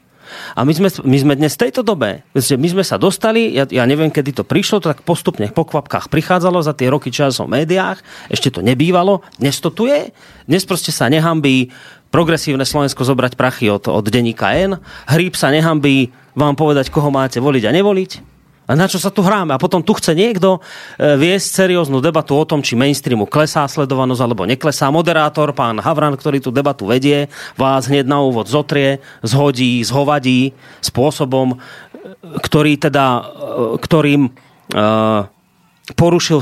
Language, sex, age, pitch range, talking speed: Slovak, male, 30-49, 125-160 Hz, 165 wpm